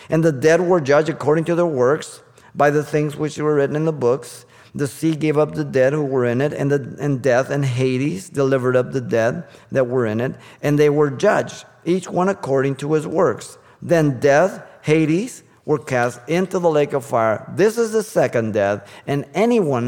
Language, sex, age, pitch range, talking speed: English, male, 50-69, 120-155 Hz, 205 wpm